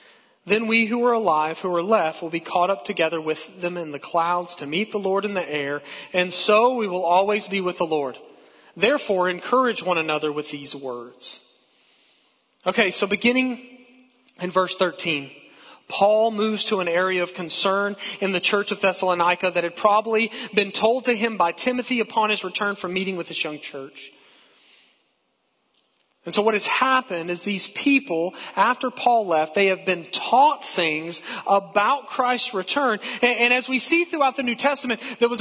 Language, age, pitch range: English, 40-59, 175-230 Hz